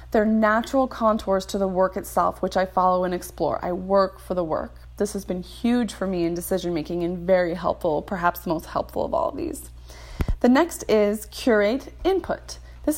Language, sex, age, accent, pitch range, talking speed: English, female, 20-39, American, 180-230 Hz, 195 wpm